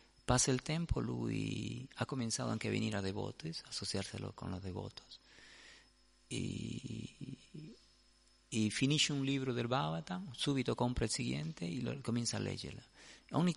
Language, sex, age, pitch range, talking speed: Italian, male, 40-59, 105-135 Hz, 150 wpm